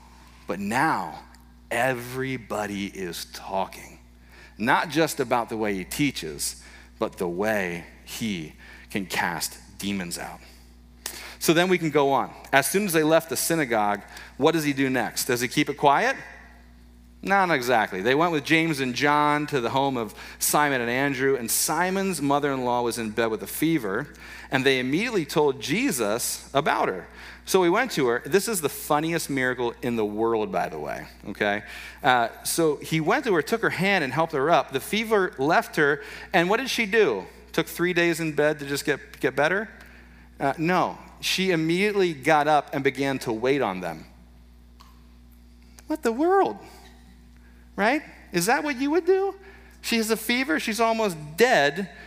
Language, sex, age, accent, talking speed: English, male, 40-59, American, 175 wpm